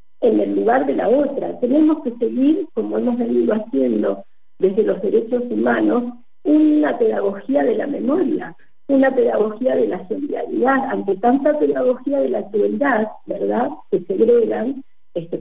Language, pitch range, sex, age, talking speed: Spanish, 220-290 Hz, female, 50-69, 145 wpm